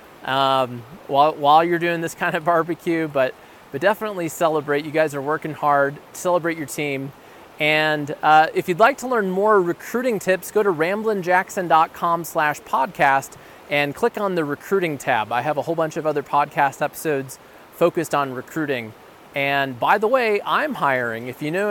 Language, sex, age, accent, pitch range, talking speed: English, male, 20-39, American, 140-175 Hz, 175 wpm